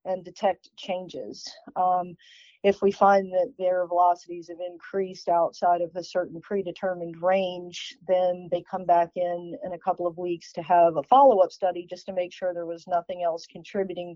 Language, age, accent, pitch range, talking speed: English, 40-59, American, 175-195 Hz, 180 wpm